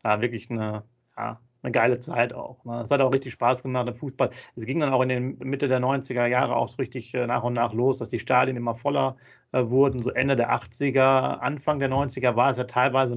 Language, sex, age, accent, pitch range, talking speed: German, male, 40-59, German, 120-130 Hz, 235 wpm